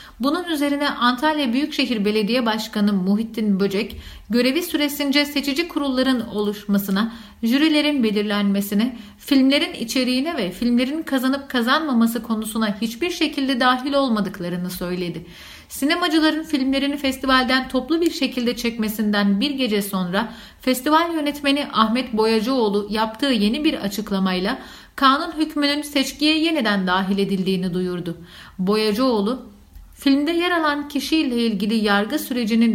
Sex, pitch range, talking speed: female, 210-285 Hz, 110 wpm